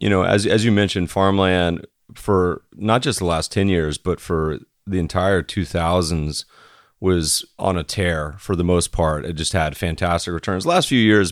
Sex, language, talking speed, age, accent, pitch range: male, English, 190 wpm, 30-49, American, 85-100 Hz